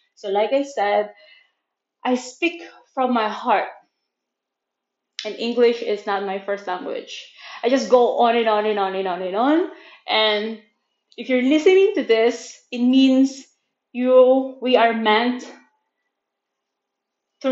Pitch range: 235-295 Hz